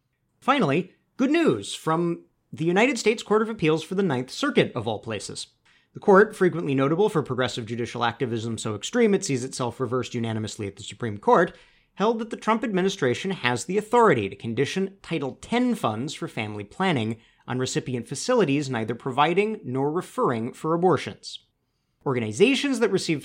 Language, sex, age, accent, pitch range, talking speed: English, male, 30-49, American, 115-175 Hz, 165 wpm